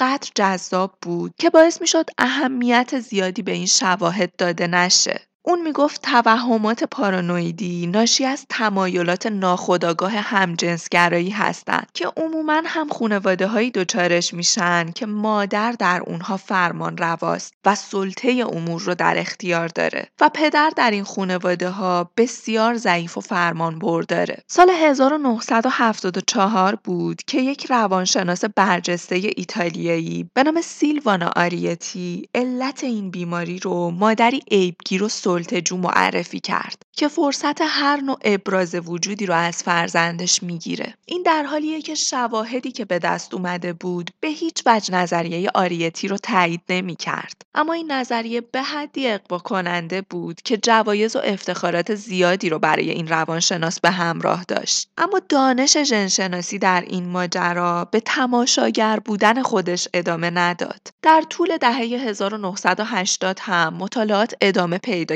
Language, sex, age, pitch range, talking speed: Persian, female, 20-39, 175-240 Hz, 135 wpm